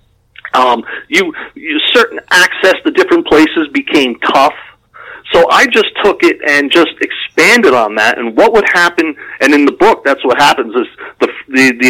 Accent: American